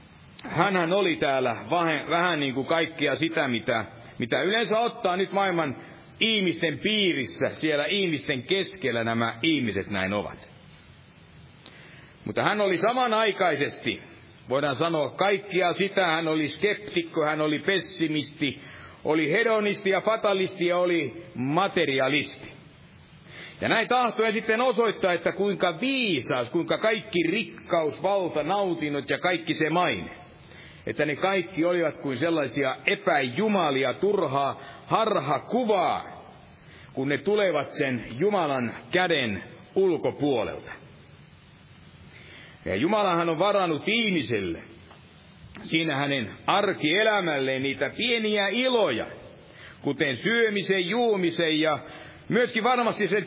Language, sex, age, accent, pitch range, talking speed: Finnish, male, 60-79, native, 150-205 Hz, 110 wpm